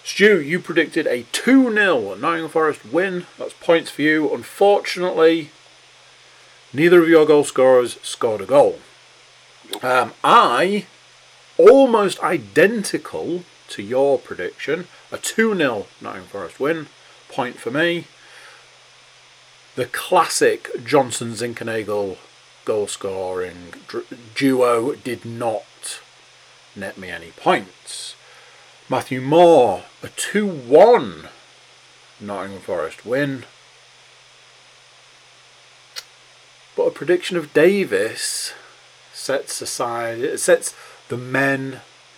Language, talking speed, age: English, 95 wpm, 40-59